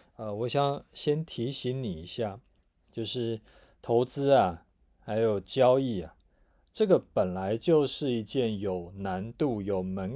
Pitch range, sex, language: 95-125 Hz, male, Chinese